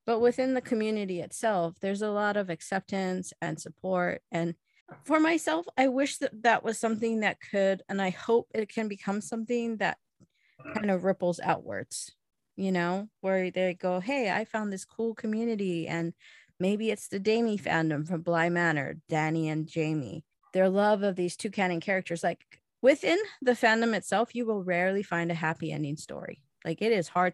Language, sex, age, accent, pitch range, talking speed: English, female, 30-49, American, 170-215 Hz, 180 wpm